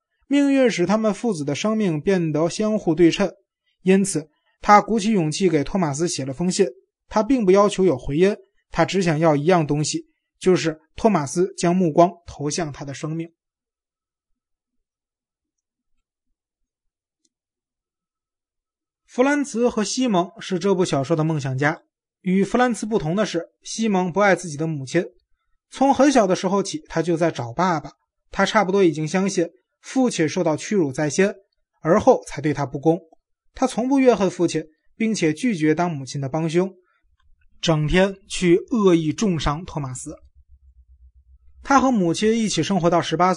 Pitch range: 155-205 Hz